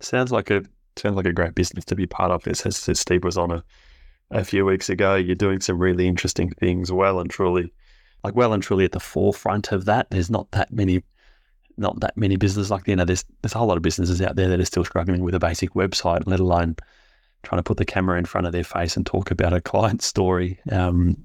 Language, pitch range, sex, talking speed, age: English, 85-95 Hz, male, 245 wpm, 20-39